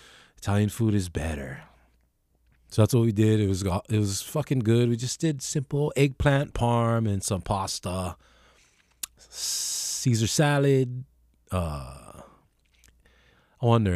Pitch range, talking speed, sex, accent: 90-125 Hz, 135 wpm, male, American